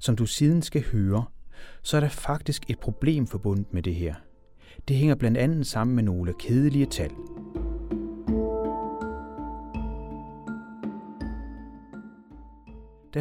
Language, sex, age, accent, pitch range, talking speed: Danish, male, 30-49, native, 100-135 Hz, 115 wpm